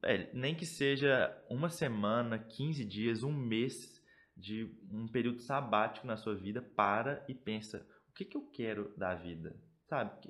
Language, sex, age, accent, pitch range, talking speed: Portuguese, male, 20-39, Brazilian, 105-145 Hz, 155 wpm